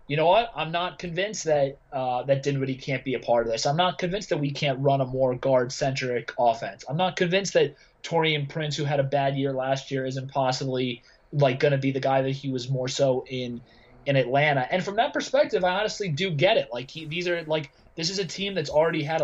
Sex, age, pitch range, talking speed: male, 30-49, 135-175 Hz, 240 wpm